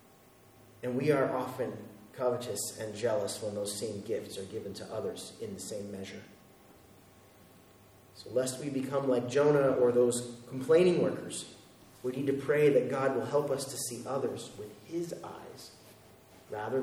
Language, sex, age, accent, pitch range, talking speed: English, male, 30-49, American, 105-130 Hz, 160 wpm